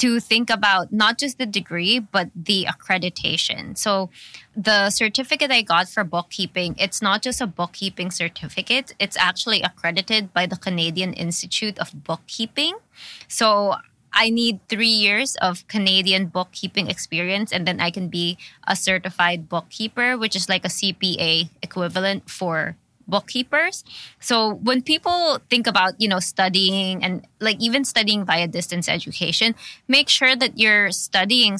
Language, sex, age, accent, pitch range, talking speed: English, female, 20-39, Filipino, 180-220 Hz, 145 wpm